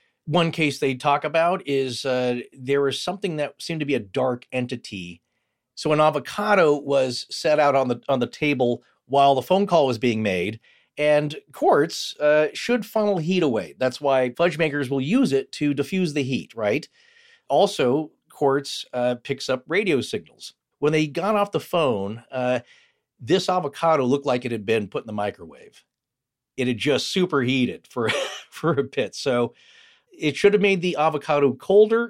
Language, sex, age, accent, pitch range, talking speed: English, male, 40-59, American, 125-180 Hz, 180 wpm